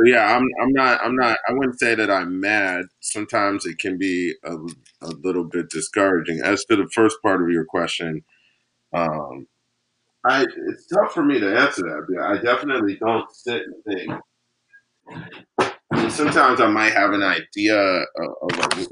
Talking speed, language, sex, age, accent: 165 wpm, English, male, 30-49, American